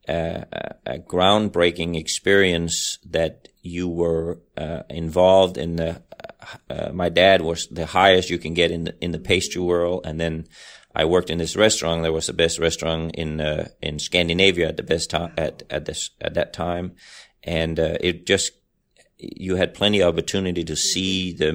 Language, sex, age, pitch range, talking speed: English, male, 30-49, 85-95 Hz, 180 wpm